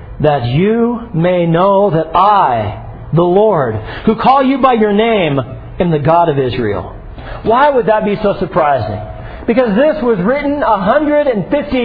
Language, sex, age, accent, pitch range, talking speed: English, male, 50-69, American, 190-260 Hz, 150 wpm